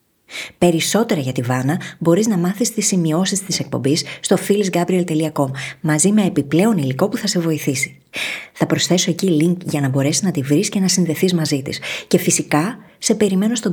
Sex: female